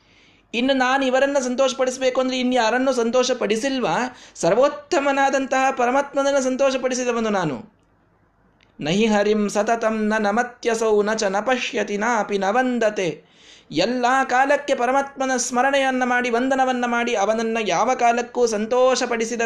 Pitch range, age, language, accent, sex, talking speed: 165-255 Hz, 20-39, Kannada, native, male, 100 wpm